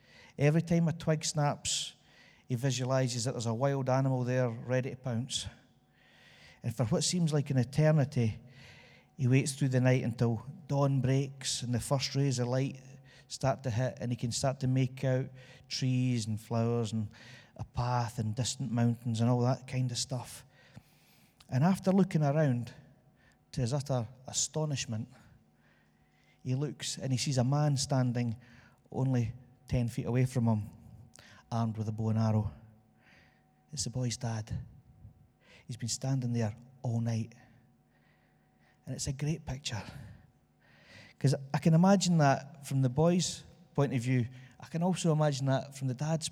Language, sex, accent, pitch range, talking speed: English, male, British, 120-140 Hz, 160 wpm